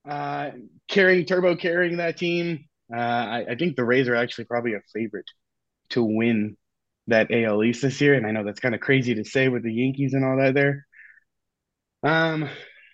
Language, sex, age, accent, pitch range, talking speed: English, male, 20-39, American, 115-145 Hz, 190 wpm